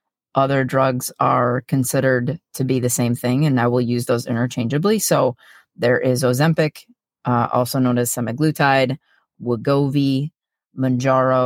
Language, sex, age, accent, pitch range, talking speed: English, female, 30-49, American, 130-165 Hz, 135 wpm